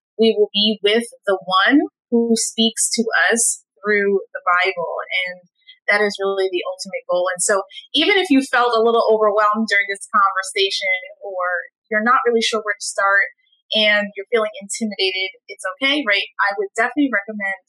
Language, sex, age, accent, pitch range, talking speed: English, female, 20-39, American, 195-260 Hz, 175 wpm